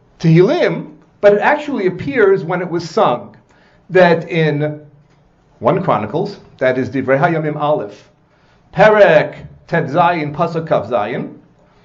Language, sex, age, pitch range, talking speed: English, male, 40-59, 150-205 Hz, 115 wpm